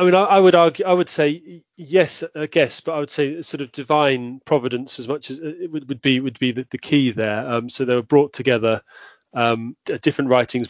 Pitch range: 115-140 Hz